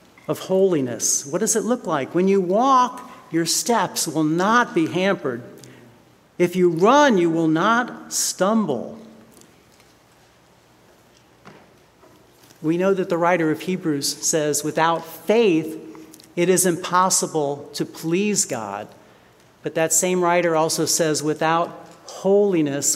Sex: male